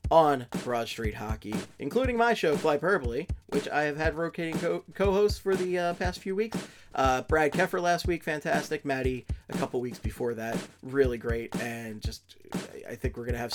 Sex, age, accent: male, 30-49, American